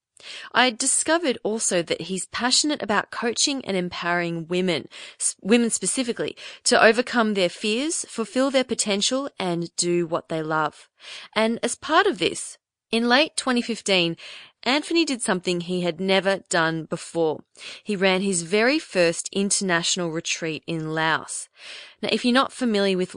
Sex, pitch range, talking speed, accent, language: female, 165-220 Hz, 145 wpm, Australian, English